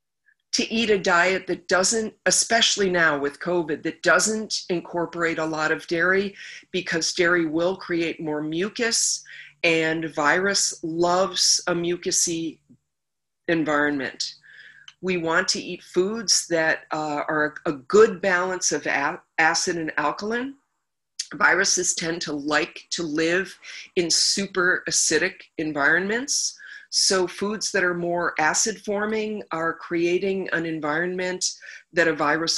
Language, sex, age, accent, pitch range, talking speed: English, female, 50-69, American, 160-195 Hz, 125 wpm